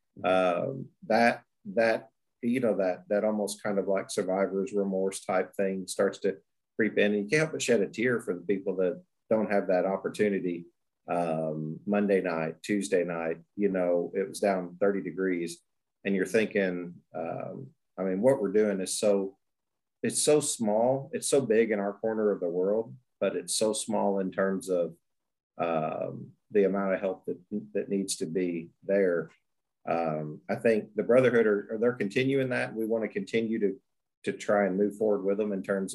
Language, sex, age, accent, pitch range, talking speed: English, male, 40-59, American, 95-105 Hz, 185 wpm